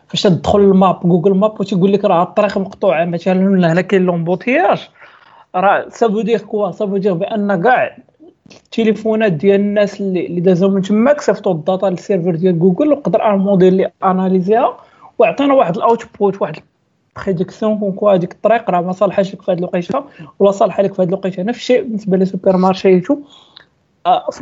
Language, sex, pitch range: Arabic, male, 190-245 Hz